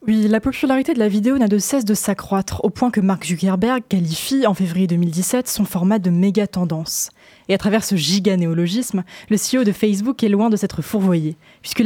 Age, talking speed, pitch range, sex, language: 20-39, 200 wpm, 180-225 Hz, female, French